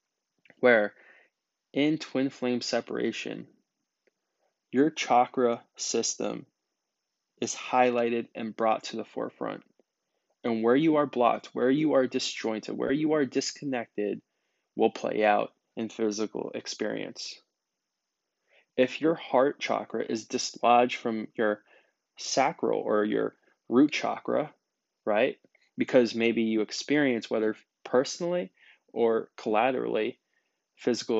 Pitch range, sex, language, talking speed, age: 110-135 Hz, male, English, 110 wpm, 20-39